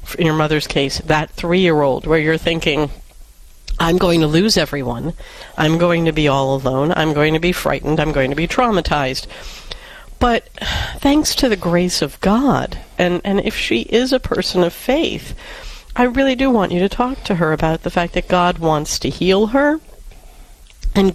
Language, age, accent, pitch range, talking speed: English, 50-69, American, 160-220 Hz, 185 wpm